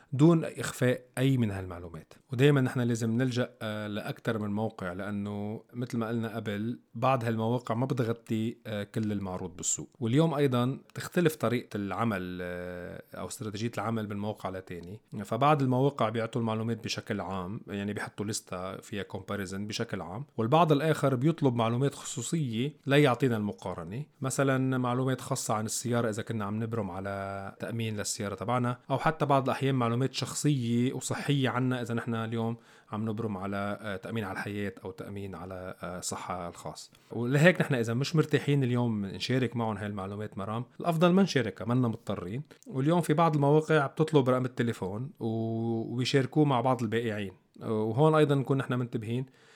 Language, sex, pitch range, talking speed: Arabic, male, 105-135 Hz, 150 wpm